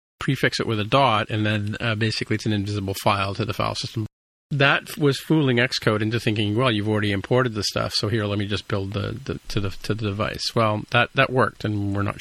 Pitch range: 100-120 Hz